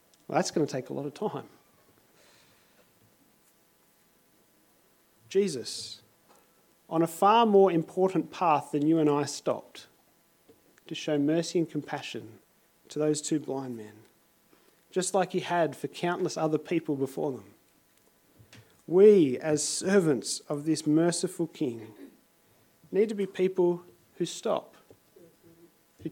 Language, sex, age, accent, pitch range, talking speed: English, male, 40-59, Australian, 145-180 Hz, 125 wpm